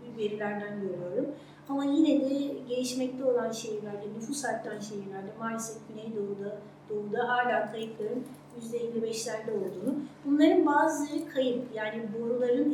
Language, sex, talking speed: Turkish, female, 105 wpm